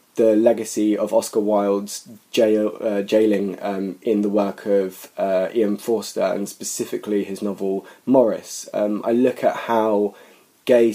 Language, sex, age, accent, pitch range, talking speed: English, male, 20-39, British, 100-115 Hz, 140 wpm